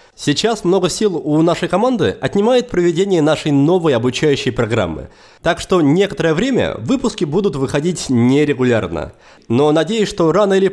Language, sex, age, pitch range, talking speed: Russian, male, 20-39, 145-210 Hz, 140 wpm